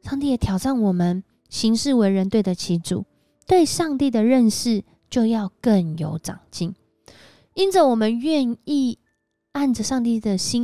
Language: Chinese